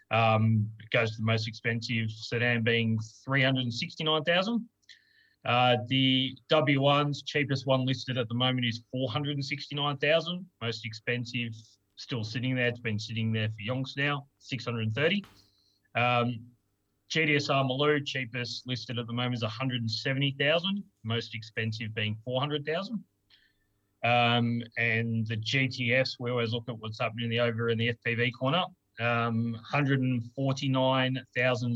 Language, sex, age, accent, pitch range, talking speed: English, male, 30-49, Australian, 115-135 Hz, 125 wpm